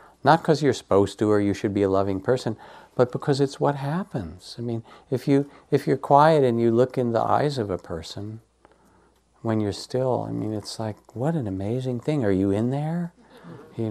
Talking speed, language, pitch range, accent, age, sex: 220 wpm, English, 90-130 Hz, American, 60-79, male